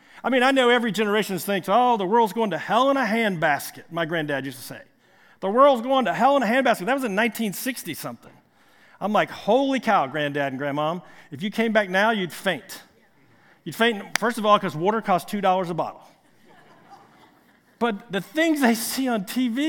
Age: 50-69